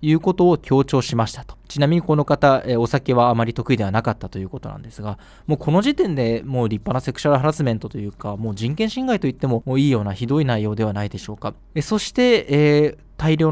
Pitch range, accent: 120-165 Hz, native